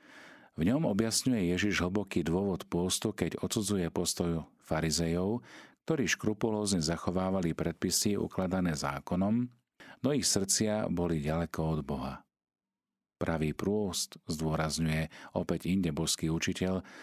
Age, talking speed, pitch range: 40-59, 105 wpm, 80-95 Hz